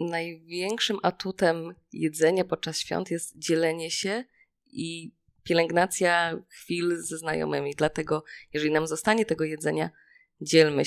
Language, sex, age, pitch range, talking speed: Polish, female, 20-39, 155-185 Hz, 110 wpm